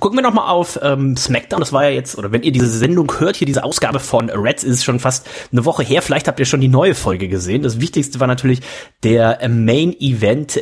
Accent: German